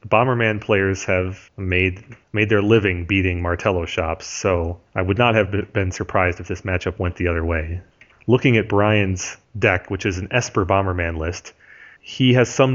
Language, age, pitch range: English, 30-49, 90-105 Hz